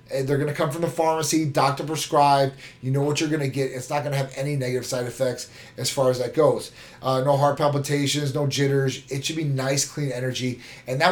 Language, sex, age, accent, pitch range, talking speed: English, male, 30-49, American, 135-170 Hz, 220 wpm